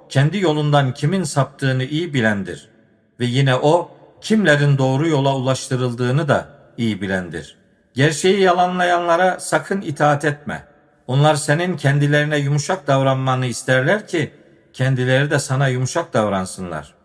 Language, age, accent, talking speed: Turkish, 50-69, native, 115 wpm